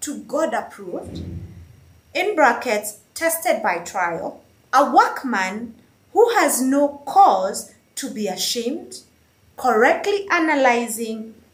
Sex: female